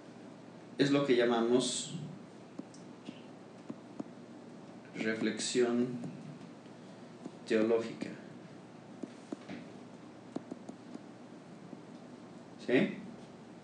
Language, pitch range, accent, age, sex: Spanish, 115-145 Hz, Mexican, 40-59, male